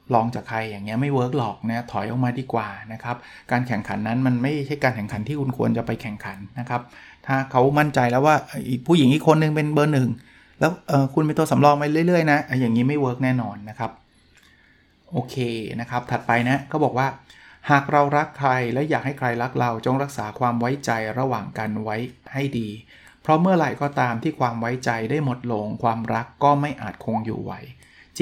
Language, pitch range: Thai, 120-155 Hz